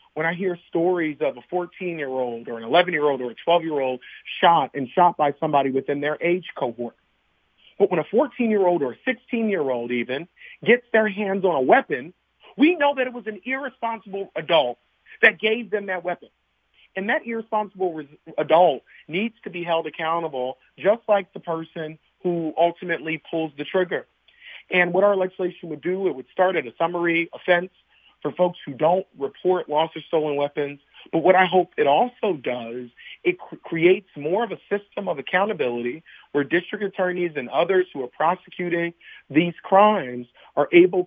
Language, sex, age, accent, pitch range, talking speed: English, male, 40-59, American, 140-185 Hz, 170 wpm